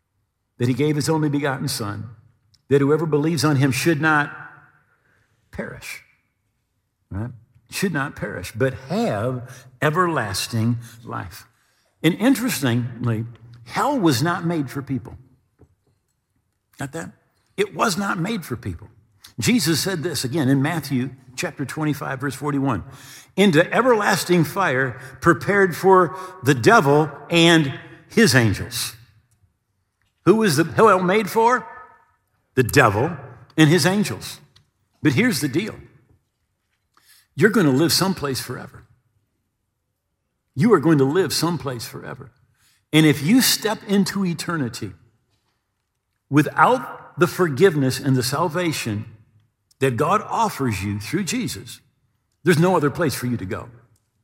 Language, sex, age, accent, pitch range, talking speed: English, male, 50-69, American, 115-165 Hz, 125 wpm